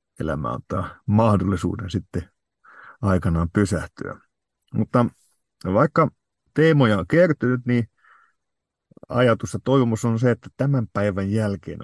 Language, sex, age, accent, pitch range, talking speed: Finnish, male, 50-69, native, 90-120 Hz, 105 wpm